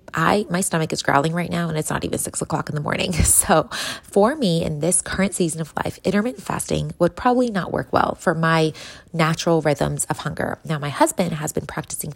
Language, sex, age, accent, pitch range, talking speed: English, female, 20-39, American, 155-185 Hz, 215 wpm